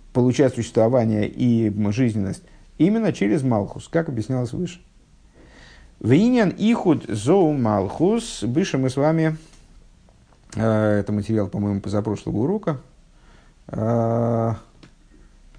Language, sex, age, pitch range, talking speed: Russian, male, 50-69, 105-130 Hz, 90 wpm